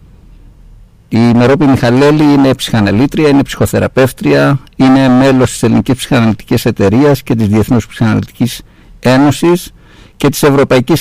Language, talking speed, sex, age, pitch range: Greek, 115 wpm, male, 60-79, 110-145 Hz